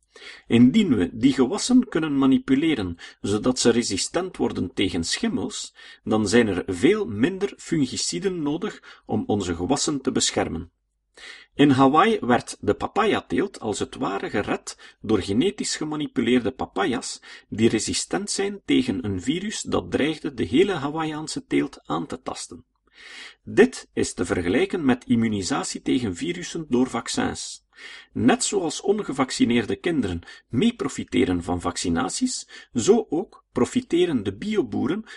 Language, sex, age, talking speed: Dutch, male, 40-59, 130 wpm